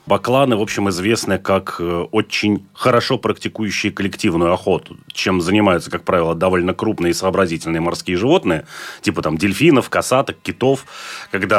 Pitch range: 95-115 Hz